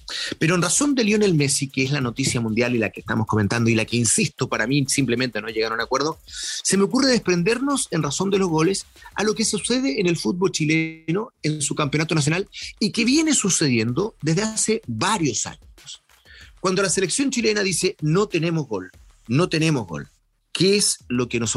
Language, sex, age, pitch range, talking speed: Spanish, male, 30-49, 145-210 Hz, 205 wpm